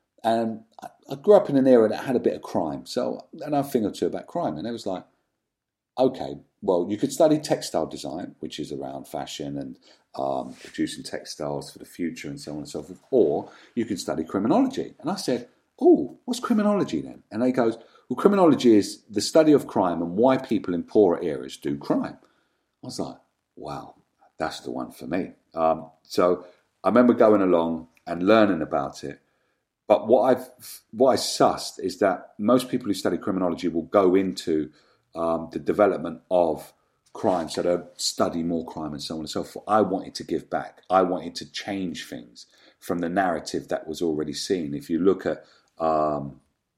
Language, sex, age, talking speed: English, male, 50-69, 195 wpm